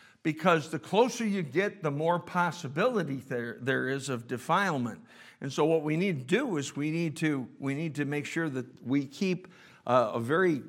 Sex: male